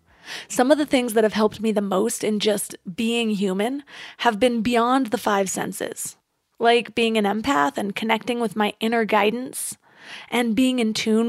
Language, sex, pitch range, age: English, female, 210-240 Hz, 20-39